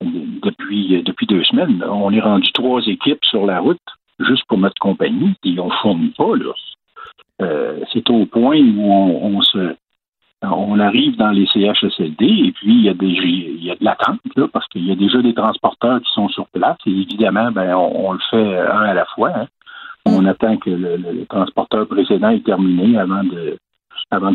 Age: 60-79